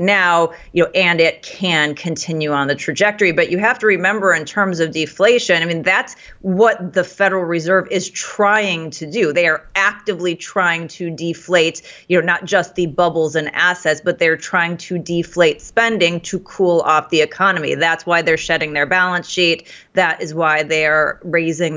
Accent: American